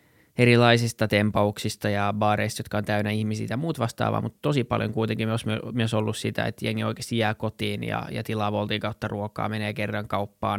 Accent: native